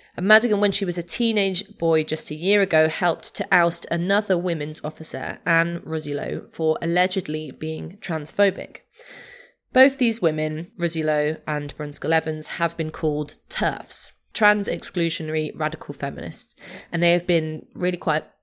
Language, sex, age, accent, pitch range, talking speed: English, female, 20-39, British, 150-180 Hz, 145 wpm